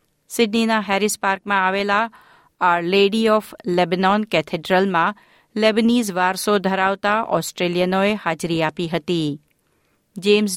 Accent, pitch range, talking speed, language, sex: native, 175-215 Hz, 95 wpm, Gujarati, female